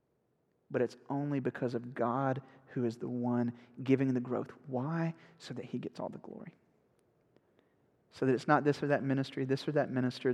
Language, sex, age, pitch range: English, male, 30-49, 125-155 Hz